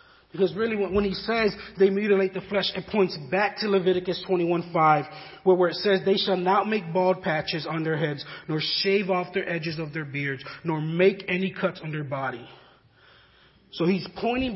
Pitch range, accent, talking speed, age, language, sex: 160-195 Hz, American, 185 wpm, 30-49, English, male